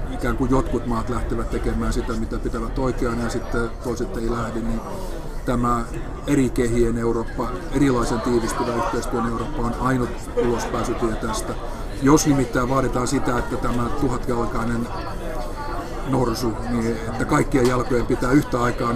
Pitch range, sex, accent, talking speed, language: 120-135 Hz, male, native, 135 wpm, Finnish